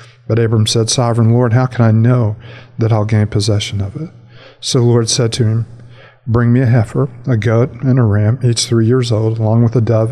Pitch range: 110-120 Hz